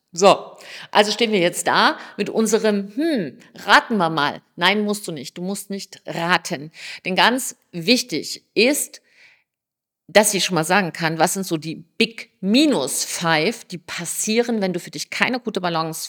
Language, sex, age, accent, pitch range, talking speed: German, female, 50-69, German, 170-215 Hz, 170 wpm